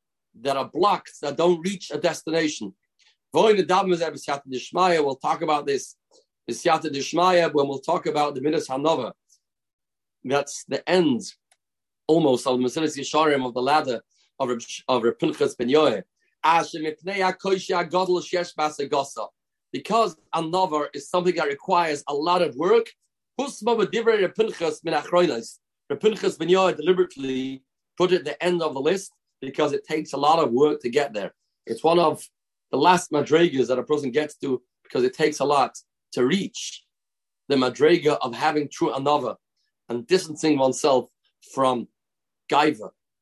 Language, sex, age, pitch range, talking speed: English, male, 40-59, 140-180 Hz, 130 wpm